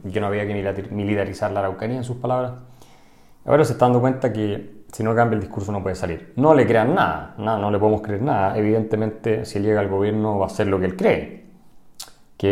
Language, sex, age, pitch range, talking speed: Spanish, male, 30-49, 95-120 Hz, 230 wpm